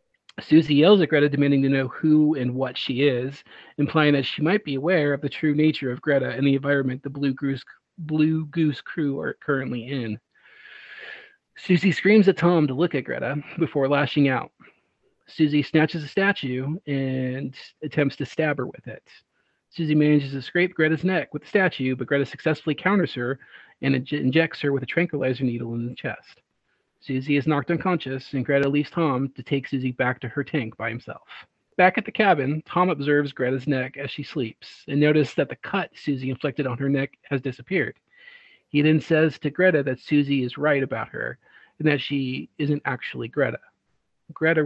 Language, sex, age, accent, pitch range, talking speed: English, male, 40-59, American, 135-155 Hz, 185 wpm